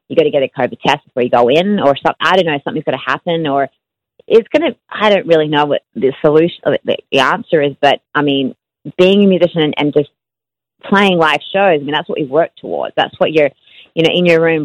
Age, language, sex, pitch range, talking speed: 30-49, English, female, 150-195 Hz, 250 wpm